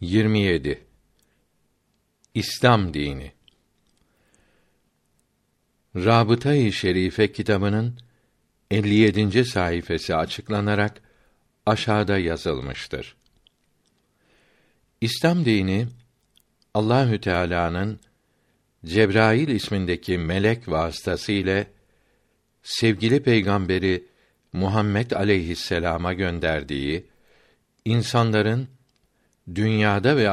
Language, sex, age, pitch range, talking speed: Turkish, male, 60-79, 90-115 Hz, 55 wpm